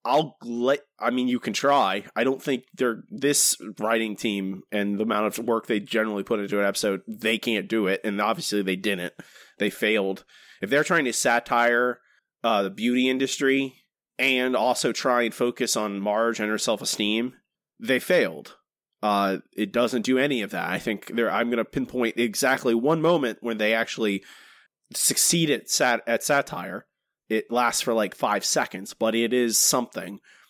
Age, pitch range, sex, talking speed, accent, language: 30-49, 105-135 Hz, male, 180 wpm, American, English